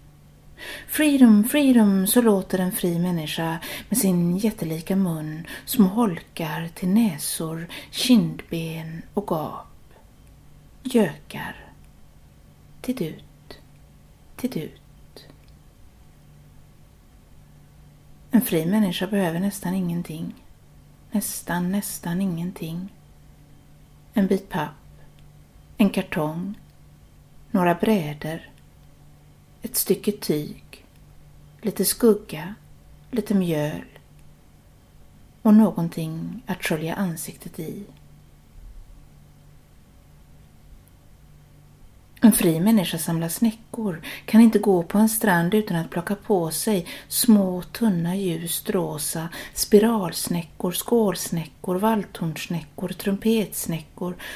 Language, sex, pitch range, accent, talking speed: Swedish, female, 165-210 Hz, native, 85 wpm